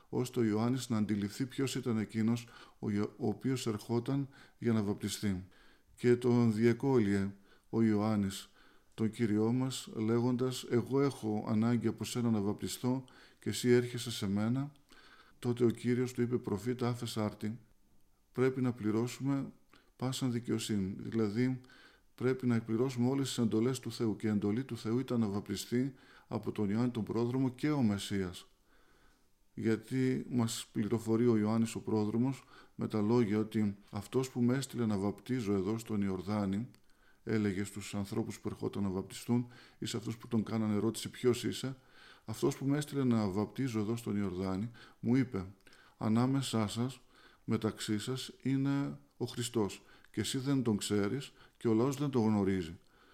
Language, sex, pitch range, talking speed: Greek, male, 105-125 Hz, 155 wpm